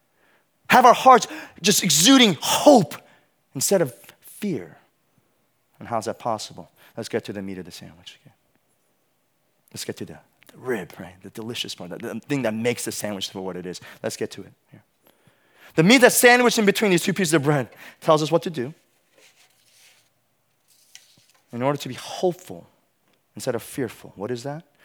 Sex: male